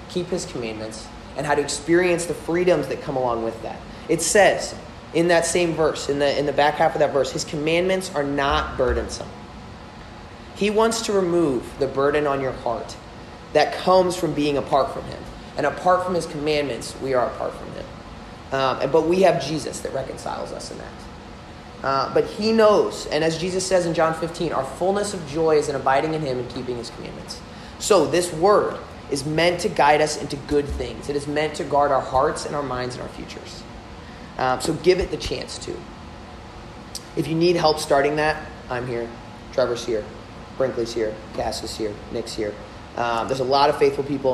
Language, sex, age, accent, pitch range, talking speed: English, male, 30-49, American, 120-165 Hz, 200 wpm